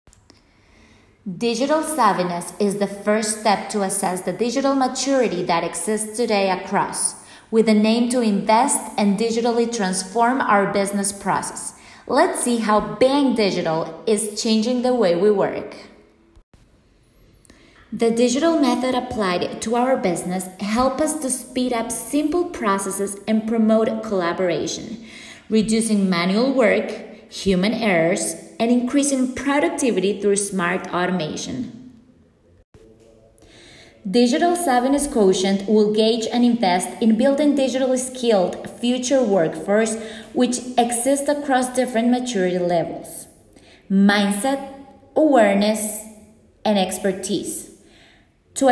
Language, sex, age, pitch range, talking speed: Amharic, female, 30-49, 195-250 Hz, 110 wpm